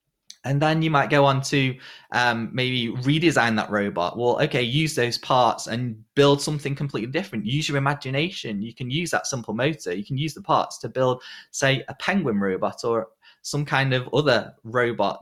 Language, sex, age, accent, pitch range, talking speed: English, male, 20-39, British, 110-140 Hz, 190 wpm